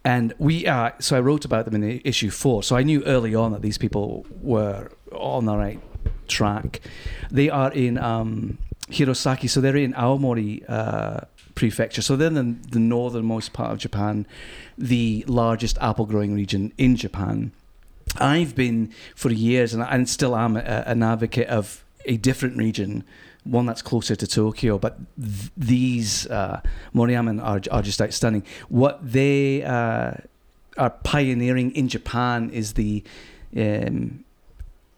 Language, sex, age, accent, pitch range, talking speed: English, male, 40-59, British, 110-130 Hz, 150 wpm